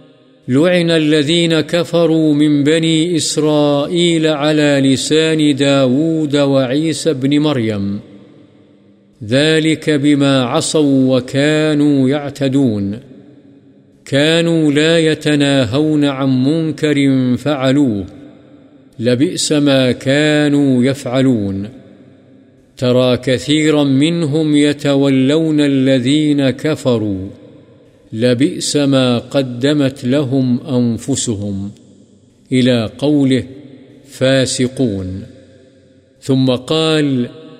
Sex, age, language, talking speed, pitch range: male, 50-69, Urdu, 70 wpm, 130-155 Hz